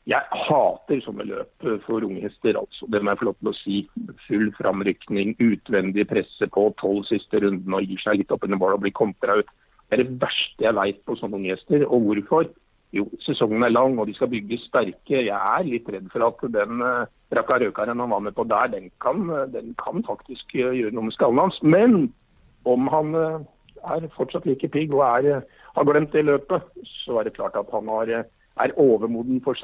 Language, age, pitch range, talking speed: Swedish, 60-79, 115-155 Hz, 185 wpm